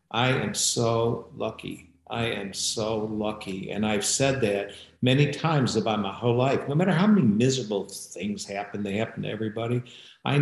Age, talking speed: 60-79, 175 wpm